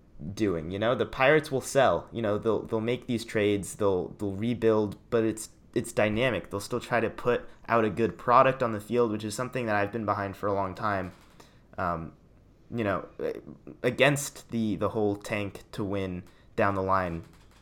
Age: 20-39